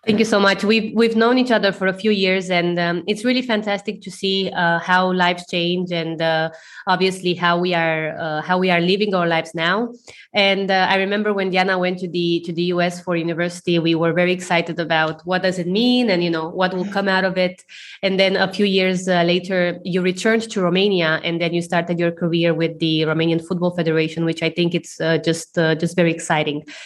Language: English